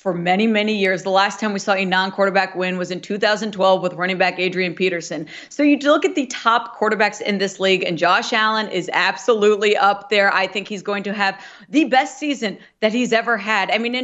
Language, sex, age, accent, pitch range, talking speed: English, female, 40-59, American, 195-245 Hz, 230 wpm